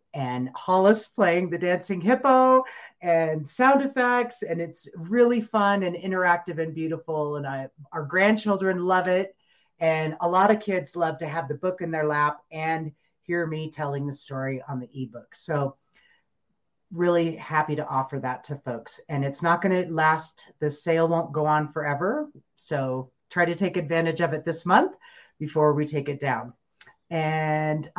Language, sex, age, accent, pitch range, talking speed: English, female, 30-49, American, 150-195 Hz, 165 wpm